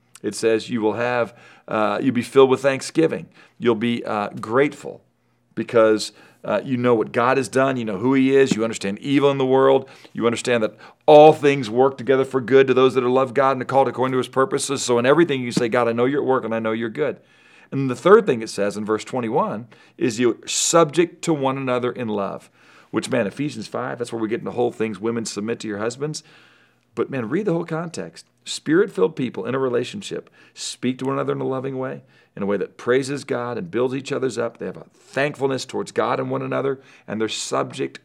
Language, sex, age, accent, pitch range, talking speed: English, male, 40-59, American, 115-135 Hz, 230 wpm